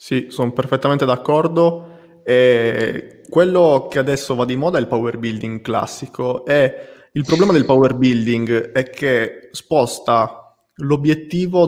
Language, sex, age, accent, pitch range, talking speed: Italian, male, 20-39, native, 120-150 Hz, 130 wpm